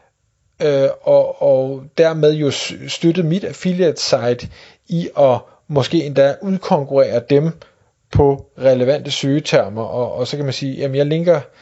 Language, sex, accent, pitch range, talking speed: Danish, male, native, 135-165 Hz, 140 wpm